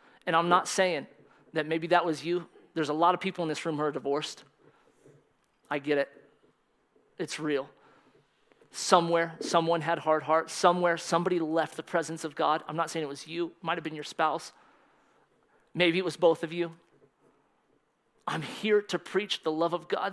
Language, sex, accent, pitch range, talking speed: English, male, American, 170-265 Hz, 190 wpm